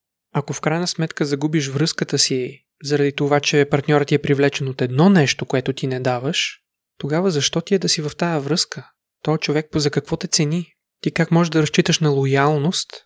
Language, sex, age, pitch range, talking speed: Bulgarian, male, 20-39, 140-165 Hz, 200 wpm